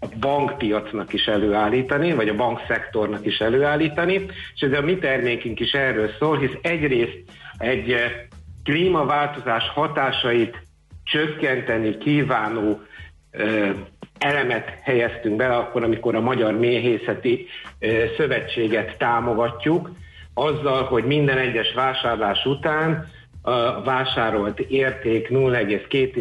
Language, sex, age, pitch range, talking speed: Hungarian, male, 60-79, 110-135 Hz, 100 wpm